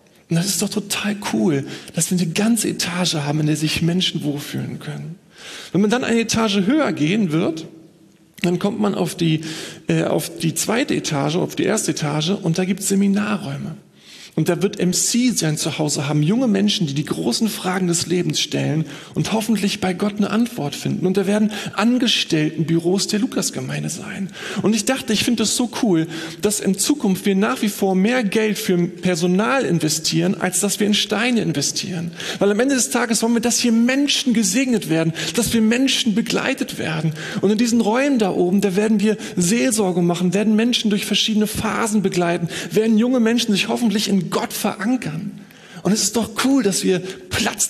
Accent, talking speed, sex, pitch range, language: German, 190 wpm, male, 180-230 Hz, German